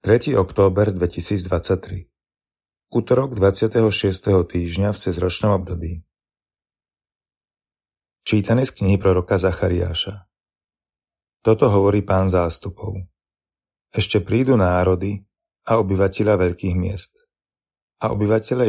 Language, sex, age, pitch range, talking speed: Slovak, male, 30-49, 90-105 Hz, 85 wpm